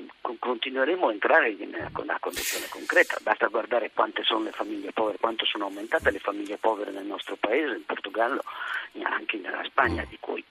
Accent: native